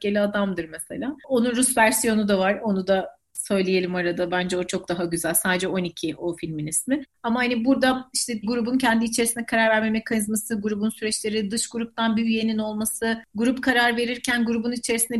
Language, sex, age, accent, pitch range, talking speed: Turkish, female, 30-49, native, 215-270 Hz, 175 wpm